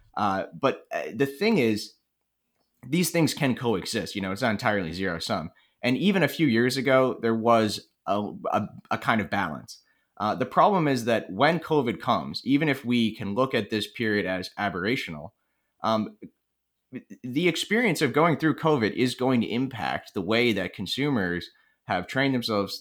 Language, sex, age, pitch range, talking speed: English, male, 30-49, 100-130 Hz, 175 wpm